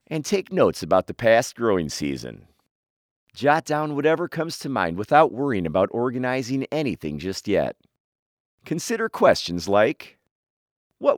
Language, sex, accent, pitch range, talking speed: English, male, American, 100-150 Hz, 135 wpm